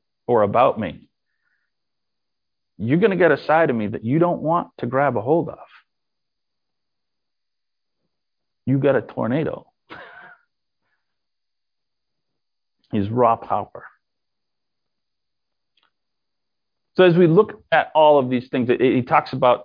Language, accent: English, American